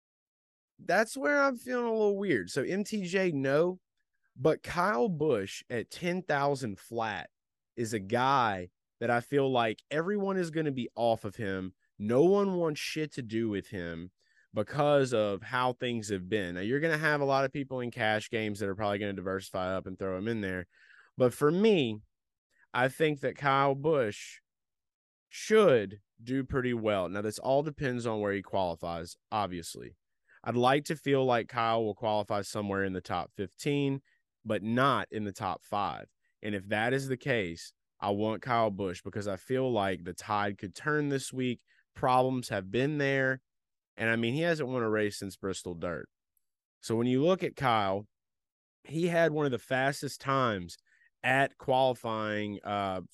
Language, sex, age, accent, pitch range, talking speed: English, male, 20-39, American, 100-135 Hz, 180 wpm